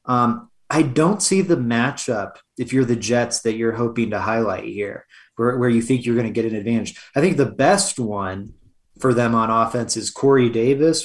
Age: 20-39